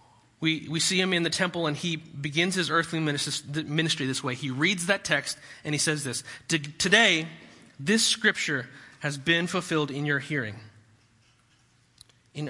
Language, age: English, 30-49